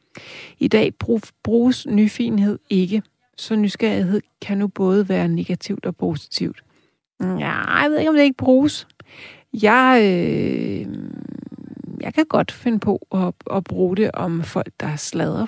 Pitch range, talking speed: 175-225 Hz, 145 wpm